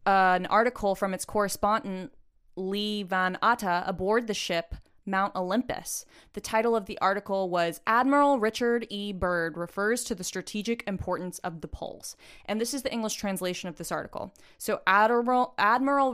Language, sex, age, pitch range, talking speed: English, female, 20-39, 185-230 Hz, 165 wpm